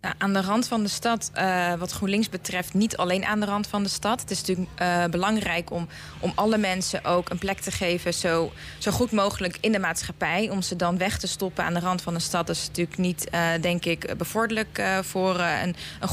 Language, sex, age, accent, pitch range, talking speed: Dutch, female, 20-39, Dutch, 180-205 Hz, 240 wpm